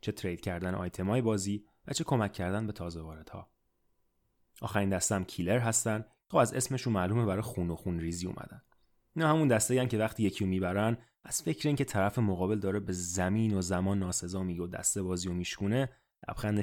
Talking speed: 185 wpm